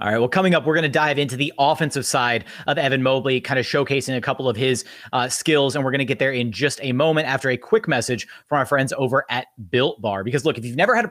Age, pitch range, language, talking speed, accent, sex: 30-49, 130-160 Hz, English, 285 wpm, American, male